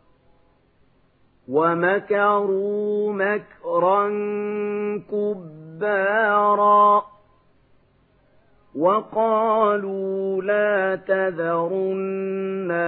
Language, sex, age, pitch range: Arabic, male, 40-59, 170-205 Hz